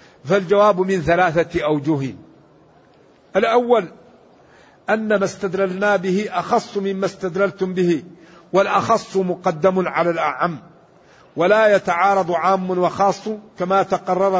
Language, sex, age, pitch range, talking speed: Arabic, male, 50-69, 180-200 Hz, 95 wpm